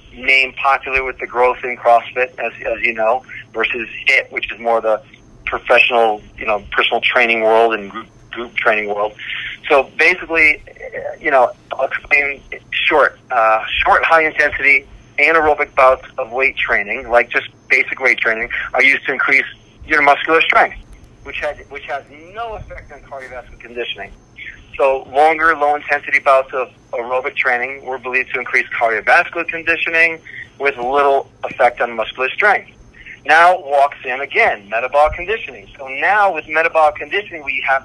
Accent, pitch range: American, 120-150 Hz